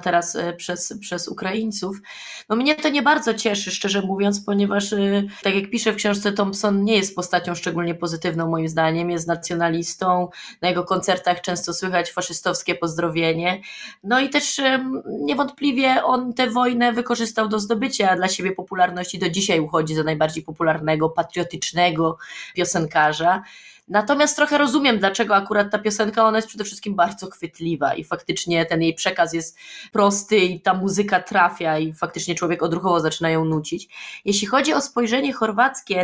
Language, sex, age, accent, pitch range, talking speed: Polish, female, 20-39, native, 175-215 Hz, 155 wpm